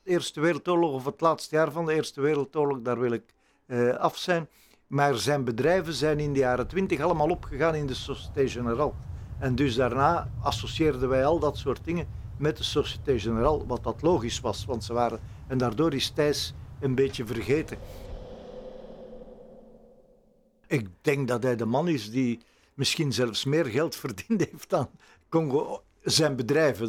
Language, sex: Dutch, male